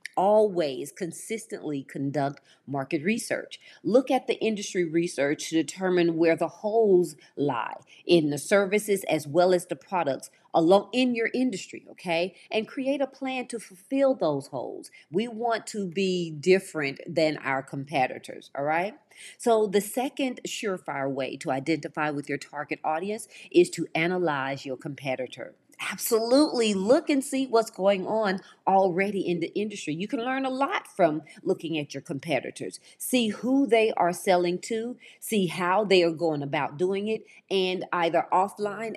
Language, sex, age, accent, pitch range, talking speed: English, female, 40-59, American, 155-215 Hz, 155 wpm